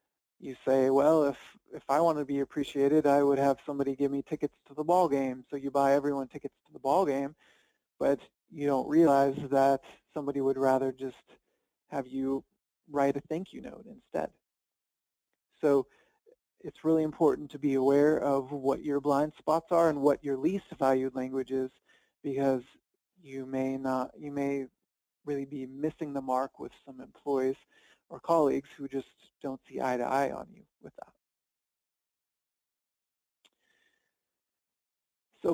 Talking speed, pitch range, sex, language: 155 wpm, 135-155 Hz, male, English